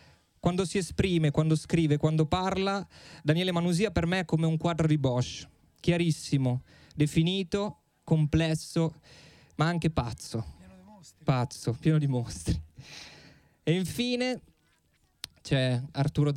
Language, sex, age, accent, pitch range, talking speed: Italian, male, 20-39, native, 135-170 Hz, 115 wpm